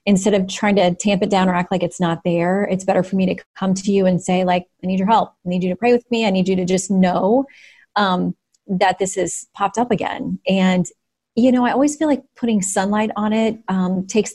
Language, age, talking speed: English, 30-49, 255 wpm